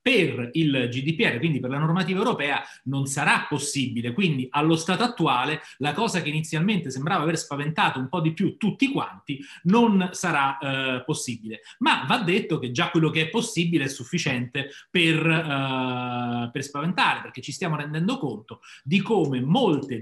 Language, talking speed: Italian, 165 wpm